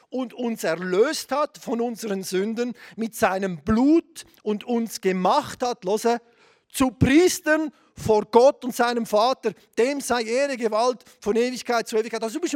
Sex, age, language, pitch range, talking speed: male, 40-59, German, 210-275 Hz, 160 wpm